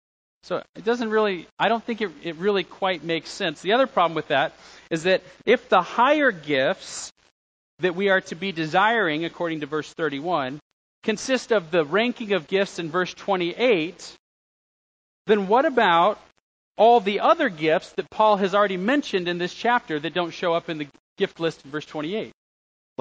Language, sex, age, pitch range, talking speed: English, male, 40-59, 150-215 Hz, 180 wpm